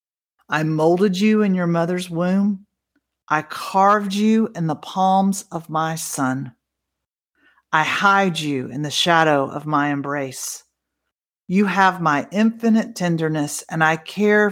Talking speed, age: 135 wpm, 50-69